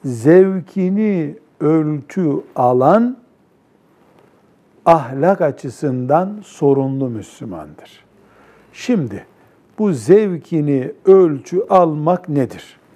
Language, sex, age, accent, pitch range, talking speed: Turkish, male, 60-79, native, 135-195 Hz, 60 wpm